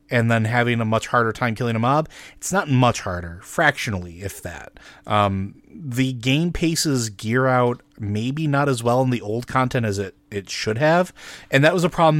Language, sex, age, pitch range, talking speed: English, male, 30-49, 105-130 Hz, 200 wpm